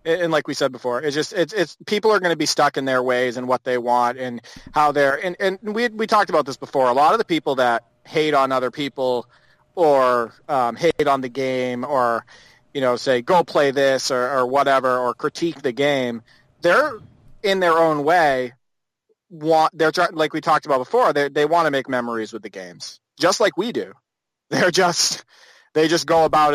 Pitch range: 125-150 Hz